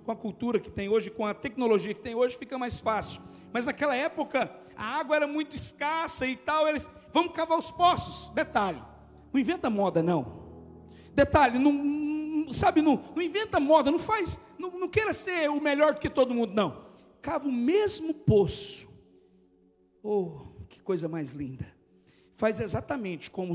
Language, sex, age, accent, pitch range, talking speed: Portuguese, male, 60-79, Brazilian, 185-300 Hz, 170 wpm